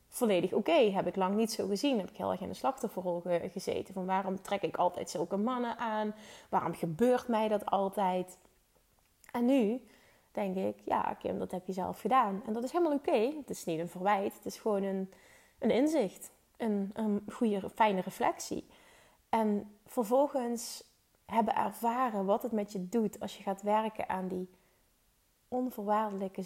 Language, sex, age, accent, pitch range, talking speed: Dutch, female, 20-39, Dutch, 190-230 Hz, 175 wpm